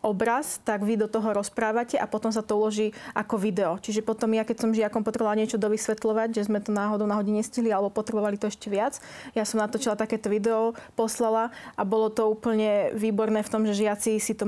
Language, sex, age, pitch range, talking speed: Slovak, female, 20-39, 200-220 Hz, 210 wpm